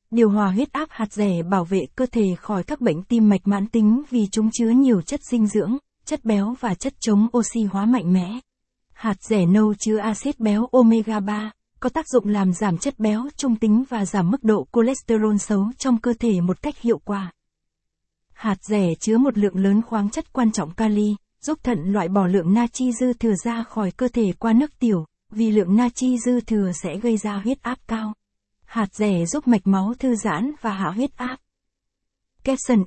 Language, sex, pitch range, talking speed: Vietnamese, female, 200-240 Hz, 205 wpm